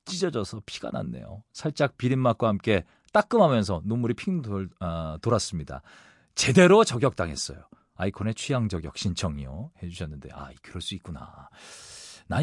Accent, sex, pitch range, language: native, male, 95-155 Hz, Korean